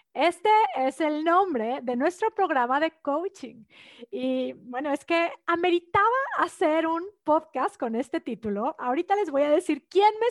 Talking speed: 155 wpm